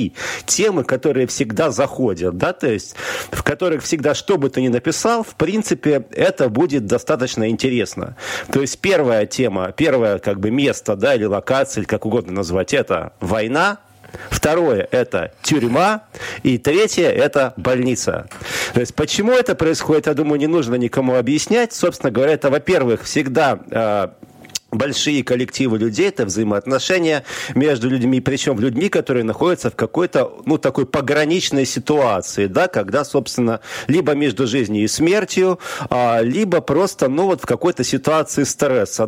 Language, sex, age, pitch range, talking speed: Russian, male, 40-59, 120-160 Hz, 145 wpm